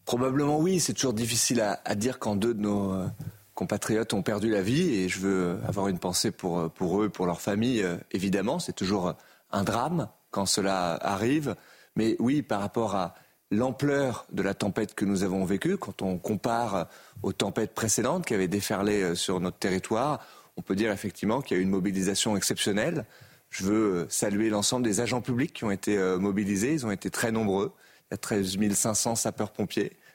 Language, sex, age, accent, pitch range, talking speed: French, male, 30-49, French, 100-135 Hz, 195 wpm